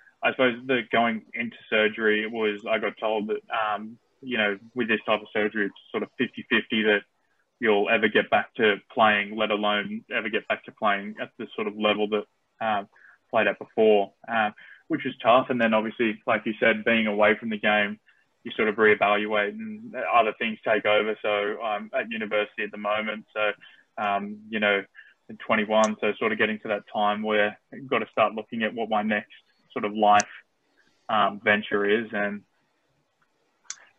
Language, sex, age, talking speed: English, male, 20-39, 190 wpm